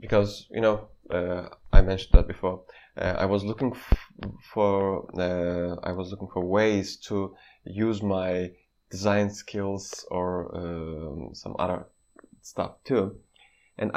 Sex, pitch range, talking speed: male, 100-145 Hz, 135 wpm